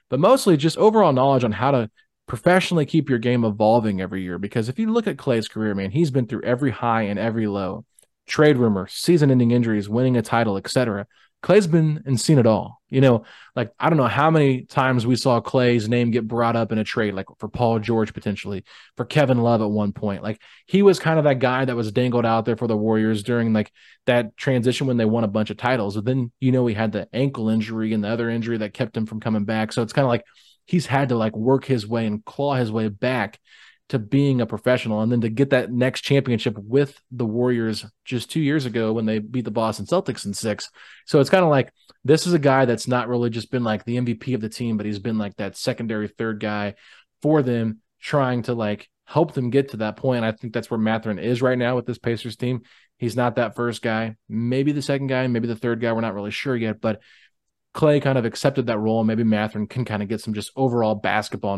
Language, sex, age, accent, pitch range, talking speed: English, male, 20-39, American, 110-130 Hz, 245 wpm